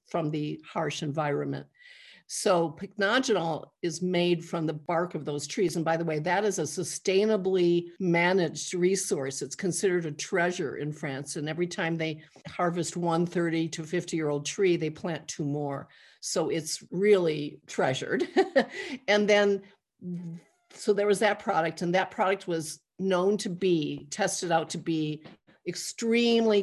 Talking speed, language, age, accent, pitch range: 155 wpm, English, 50-69, American, 155-195 Hz